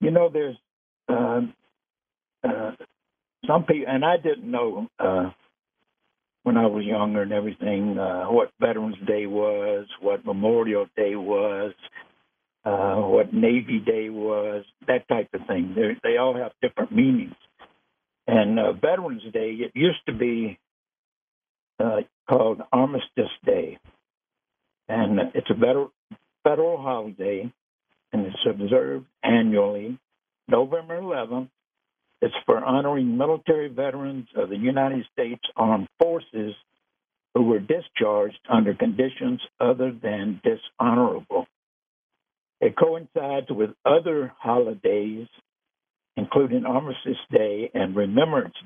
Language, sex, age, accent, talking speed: English, male, 60-79, American, 120 wpm